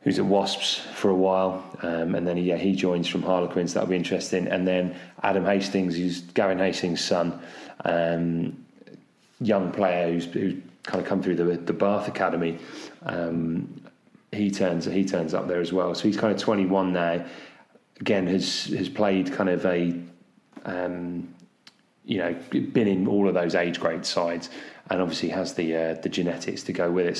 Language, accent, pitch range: English, British, 85-95 Hz